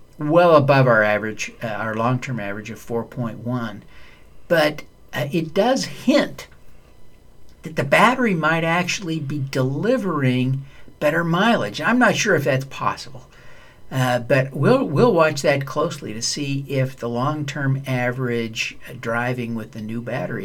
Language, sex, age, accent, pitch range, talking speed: English, male, 60-79, American, 120-150 Hz, 140 wpm